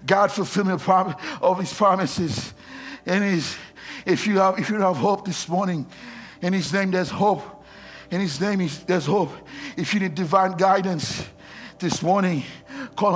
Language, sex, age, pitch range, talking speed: English, male, 60-79, 145-195 Hz, 155 wpm